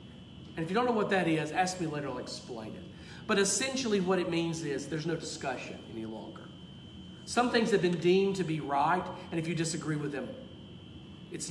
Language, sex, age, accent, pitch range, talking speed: English, male, 40-59, American, 155-205 Hz, 210 wpm